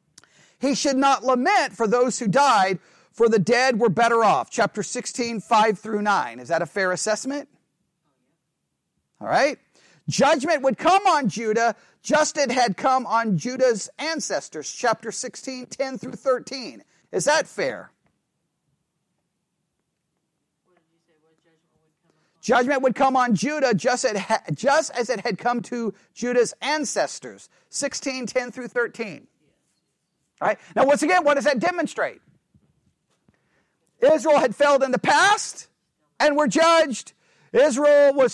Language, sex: English, male